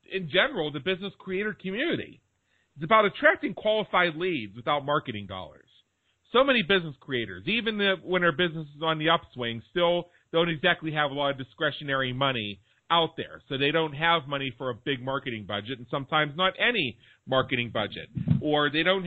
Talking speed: 180 wpm